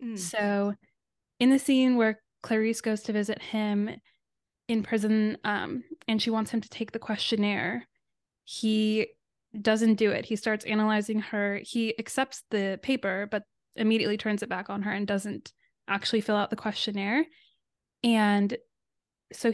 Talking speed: 150 wpm